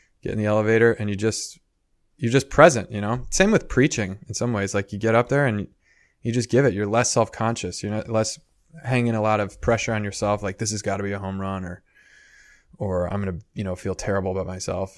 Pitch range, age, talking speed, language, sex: 100-125 Hz, 20-39, 240 wpm, English, male